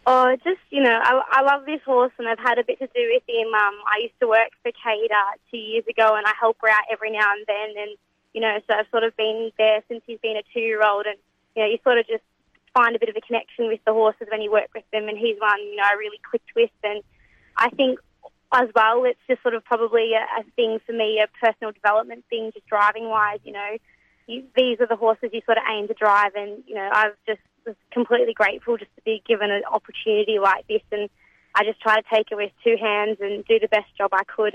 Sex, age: female, 20-39